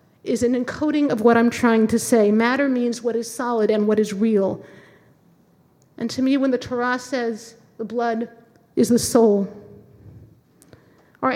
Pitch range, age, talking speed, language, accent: 210-255 Hz, 50-69, 165 wpm, English, American